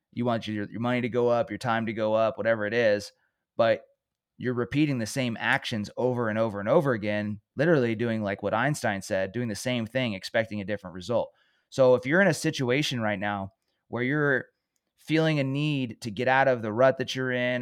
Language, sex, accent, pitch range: English, male, American, 105-130 Hz